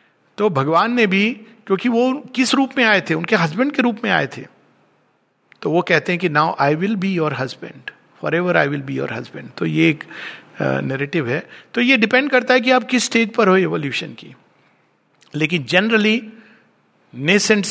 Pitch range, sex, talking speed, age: 150-205 Hz, male, 195 wpm, 50-69